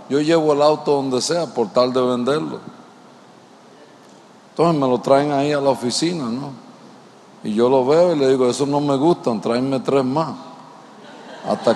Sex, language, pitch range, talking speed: male, Spanish, 130-180 Hz, 175 wpm